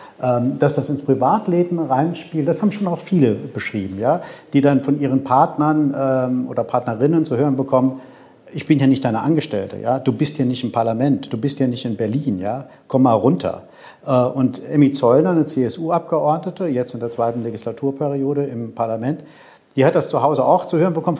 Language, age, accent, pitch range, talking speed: German, 50-69, German, 125-155 Hz, 190 wpm